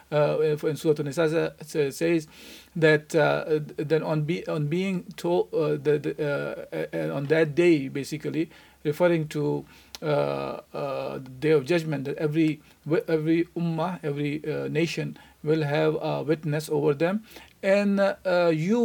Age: 50-69